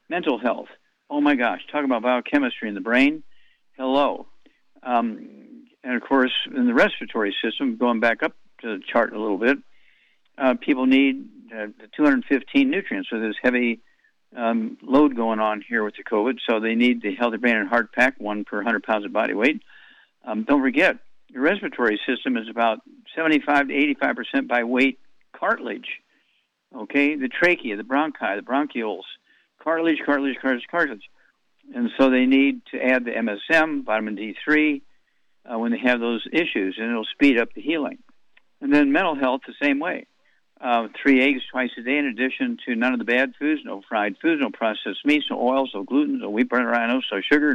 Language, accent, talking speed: English, American, 185 wpm